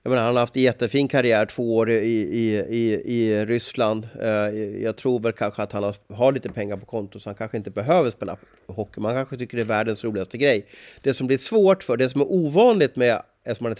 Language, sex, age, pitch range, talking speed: Swedish, male, 30-49, 110-130 Hz, 230 wpm